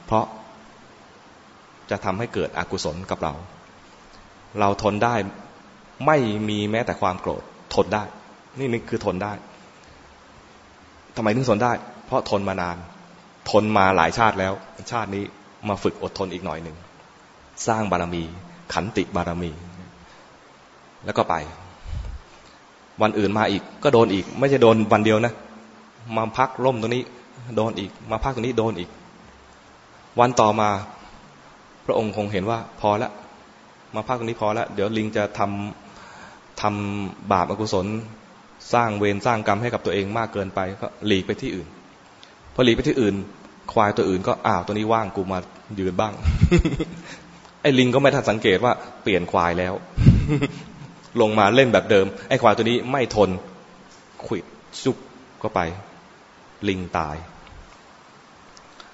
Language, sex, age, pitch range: English, male, 20-39, 95-115 Hz